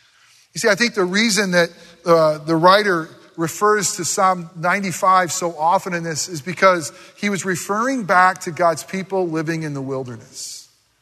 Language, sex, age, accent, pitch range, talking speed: English, male, 40-59, American, 160-215 Hz, 170 wpm